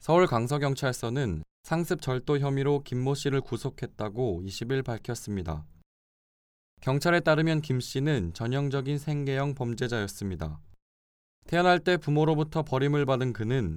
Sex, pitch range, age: male, 105-145 Hz, 20-39